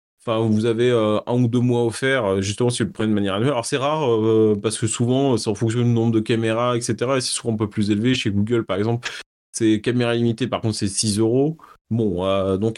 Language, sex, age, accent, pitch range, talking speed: French, male, 30-49, French, 110-135 Hz, 255 wpm